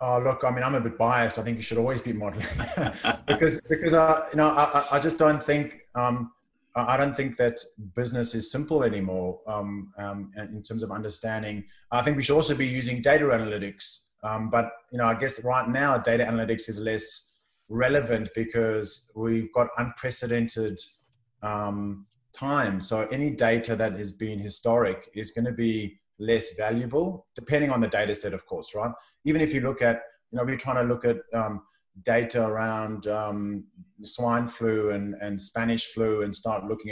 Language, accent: English, Australian